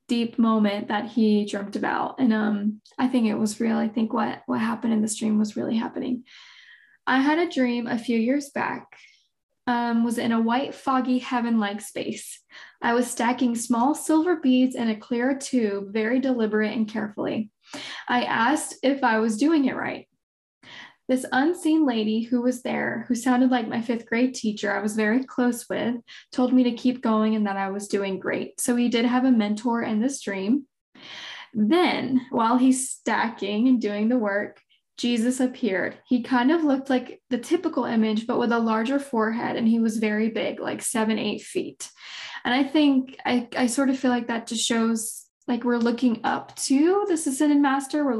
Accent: American